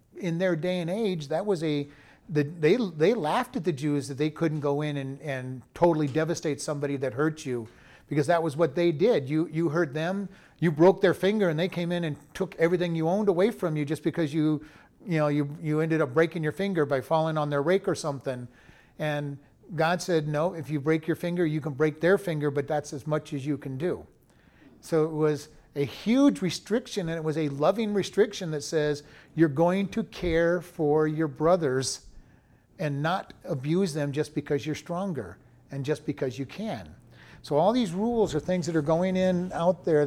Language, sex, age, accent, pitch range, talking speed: English, male, 40-59, American, 150-180 Hz, 210 wpm